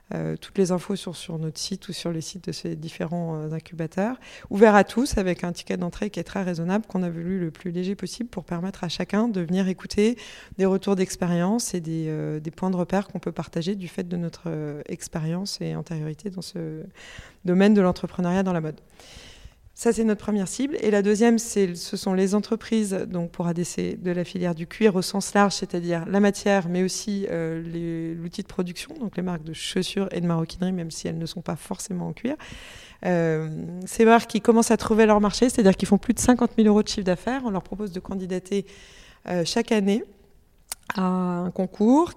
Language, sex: French, female